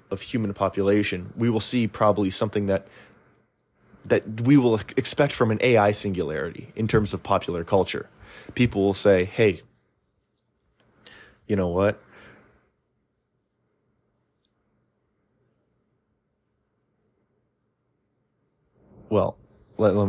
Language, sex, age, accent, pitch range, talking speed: English, male, 30-49, American, 100-115 Hz, 95 wpm